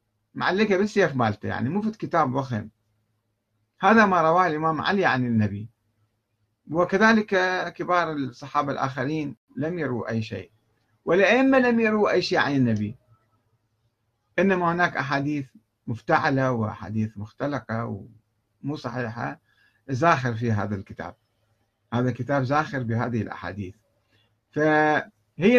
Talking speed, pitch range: 115 wpm, 110-155 Hz